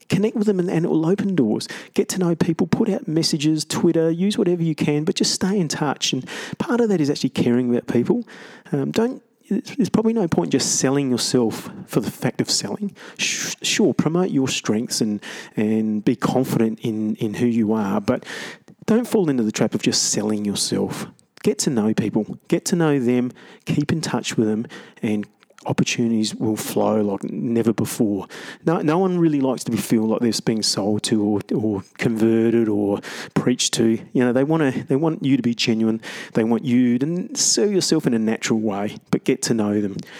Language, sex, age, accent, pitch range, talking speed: English, male, 30-49, Australian, 115-180 Hz, 200 wpm